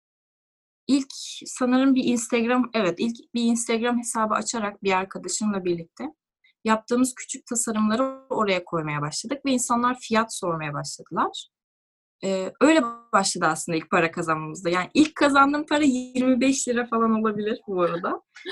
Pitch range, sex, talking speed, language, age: 200-275 Hz, female, 135 wpm, Turkish, 10-29